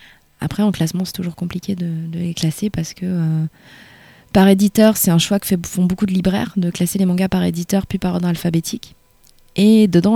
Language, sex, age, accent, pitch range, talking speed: French, female, 20-39, French, 170-195 Hz, 215 wpm